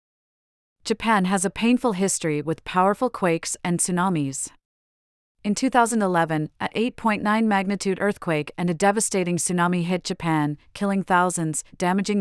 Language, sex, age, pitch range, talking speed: English, female, 40-59, 160-205 Hz, 120 wpm